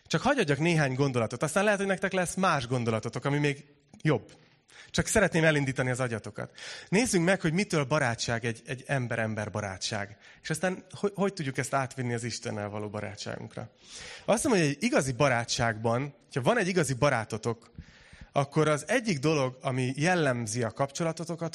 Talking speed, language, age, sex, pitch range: 160 wpm, Hungarian, 30-49, male, 120-170 Hz